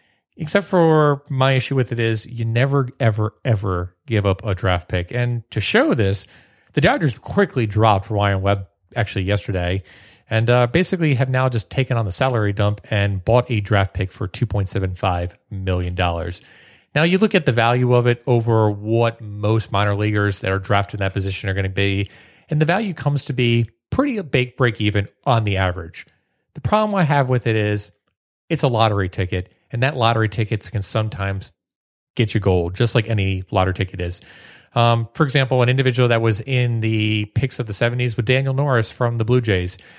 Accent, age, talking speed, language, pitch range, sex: American, 30-49, 195 wpm, English, 100-130 Hz, male